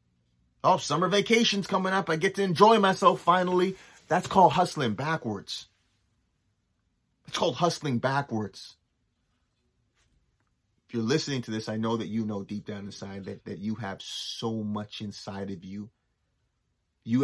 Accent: American